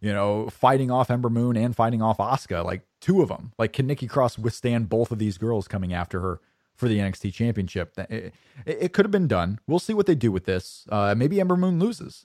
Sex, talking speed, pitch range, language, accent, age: male, 240 wpm, 100-135 Hz, English, American, 30-49